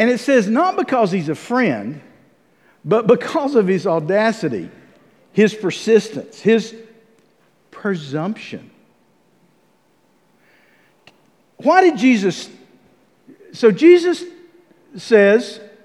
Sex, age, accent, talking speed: male, 50-69, American, 85 wpm